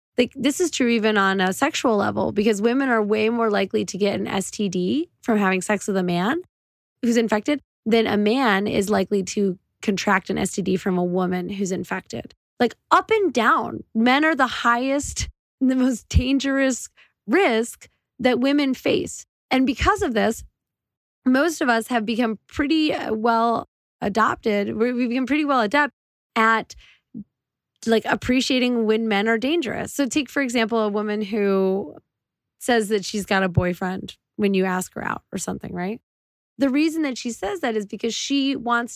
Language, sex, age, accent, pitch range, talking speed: English, female, 20-39, American, 200-255 Hz, 170 wpm